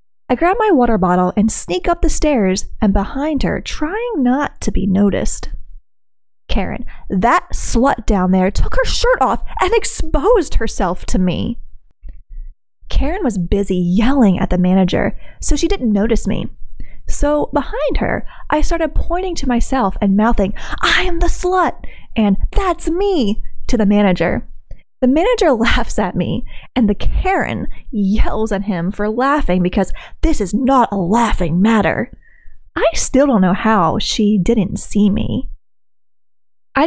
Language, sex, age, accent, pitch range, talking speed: English, female, 20-39, American, 185-285 Hz, 155 wpm